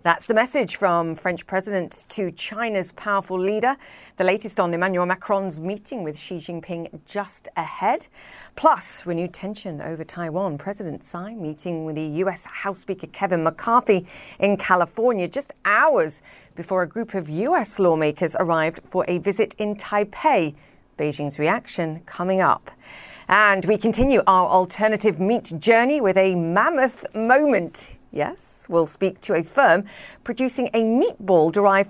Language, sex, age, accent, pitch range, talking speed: English, female, 40-59, British, 170-215 Hz, 145 wpm